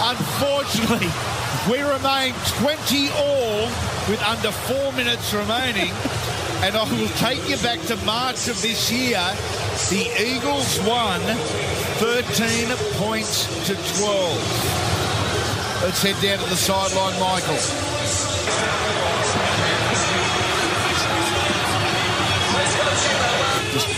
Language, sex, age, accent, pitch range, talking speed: English, male, 50-69, Australian, 120-185 Hz, 90 wpm